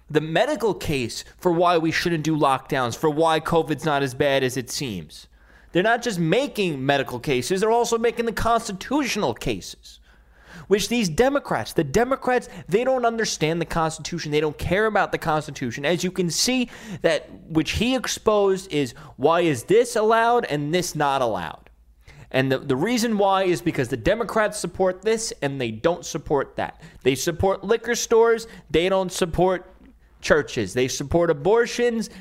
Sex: male